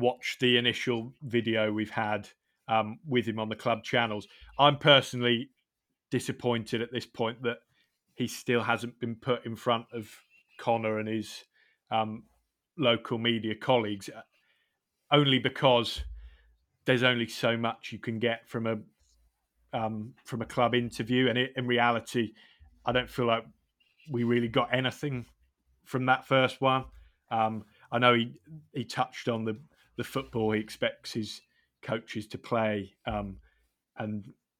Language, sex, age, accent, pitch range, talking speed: English, male, 30-49, British, 110-125 Hz, 145 wpm